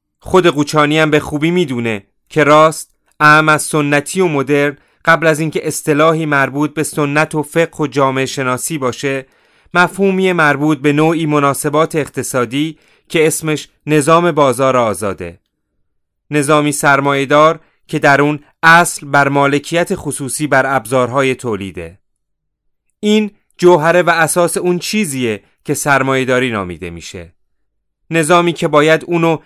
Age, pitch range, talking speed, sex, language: 30-49, 135-165 Hz, 130 wpm, male, Persian